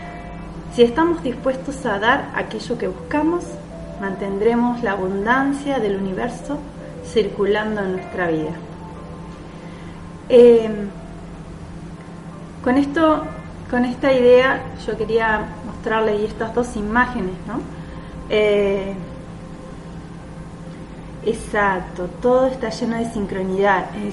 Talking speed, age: 95 wpm, 30-49